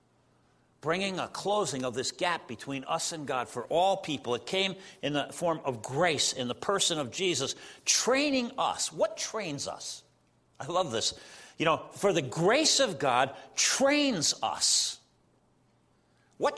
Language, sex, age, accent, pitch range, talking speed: English, male, 50-69, American, 165-270 Hz, 155 wpm